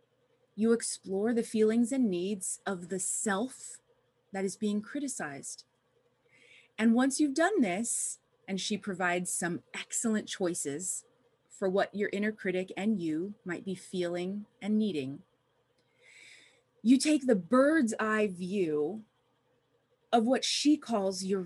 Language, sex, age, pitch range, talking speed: English, female, 30-49, 190-275 Hz, 130 wpm